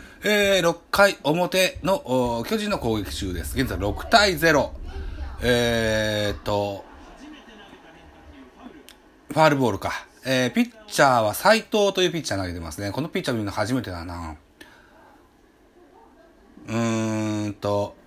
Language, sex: Japanese, male